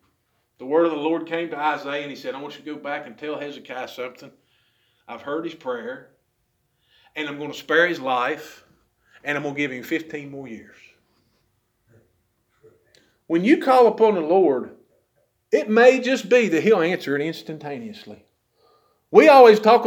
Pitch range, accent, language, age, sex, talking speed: 150-235 Hz, American, English, 40-59, male, 180 wpm